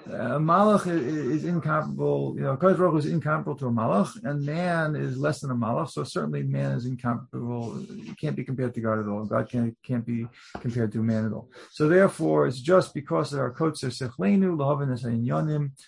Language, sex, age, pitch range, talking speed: English, male, 40-59, 120-160 Hz, 195 wpm